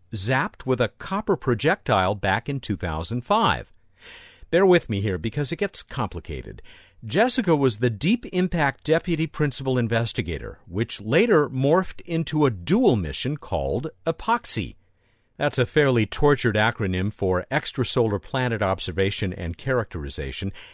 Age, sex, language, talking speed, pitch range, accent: 50-69, male, English, 125 wpm, 100-160 Hz, American